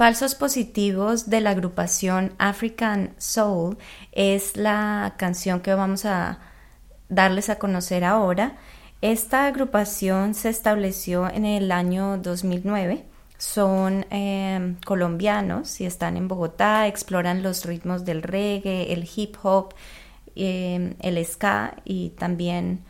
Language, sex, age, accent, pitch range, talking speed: Spanish, female, 20-39, Colombian, 180-210 Hz, 120 wpm